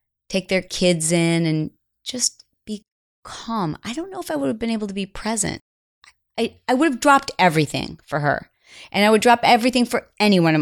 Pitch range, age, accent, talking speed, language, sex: 160-210 Hz, 30-49, American, 210 wpm, English, female